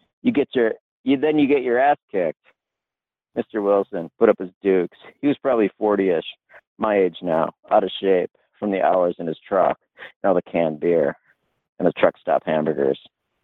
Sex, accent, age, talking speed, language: male, American, 50-69, 185 wpm, English